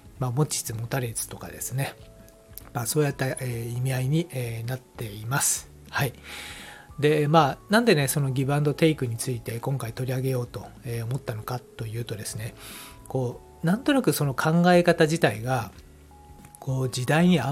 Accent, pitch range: native, 115-160 Hz